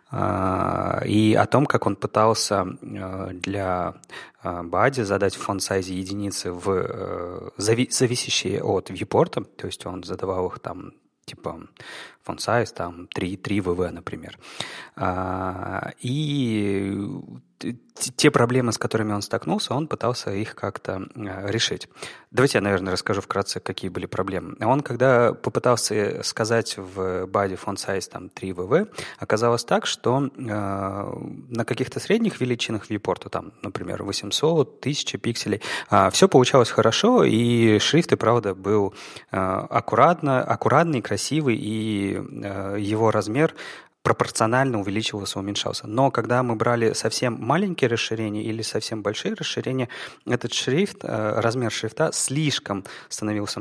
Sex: male